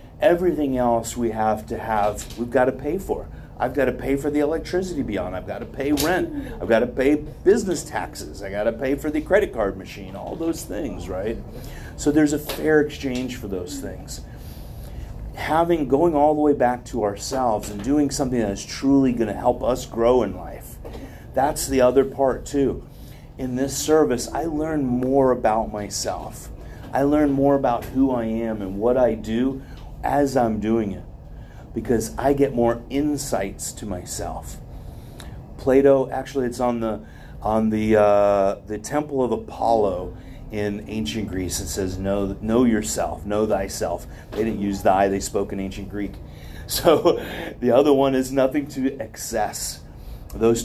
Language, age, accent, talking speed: English, 40-59, American, 175 wpm